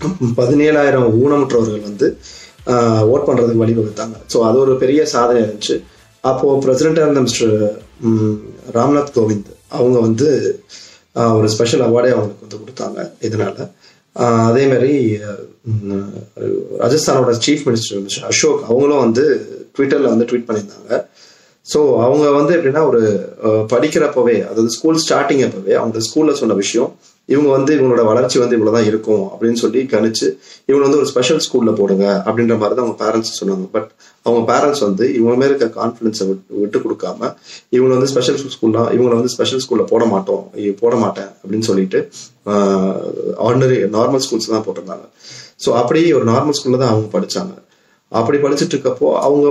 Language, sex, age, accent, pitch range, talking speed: Tamil, male, 30-49, native, 110-135 Hz, 145 wpm